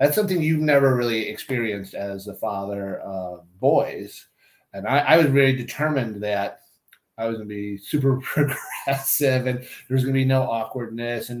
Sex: male